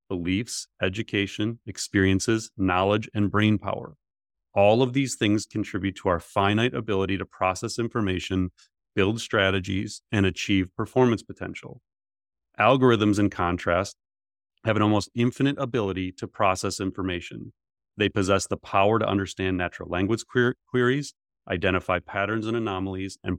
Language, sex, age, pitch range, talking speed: English, male, 30-49, 95-115 Hz, 130 wpm